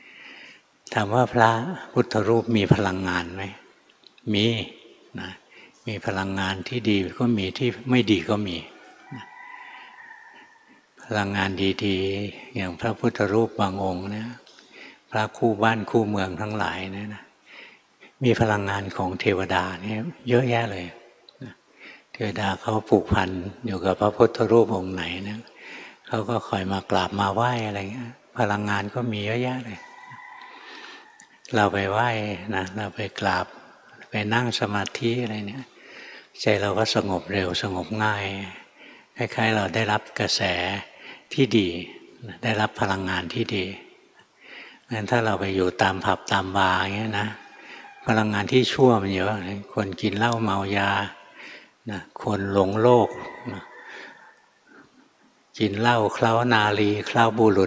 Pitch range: 95-115 Hz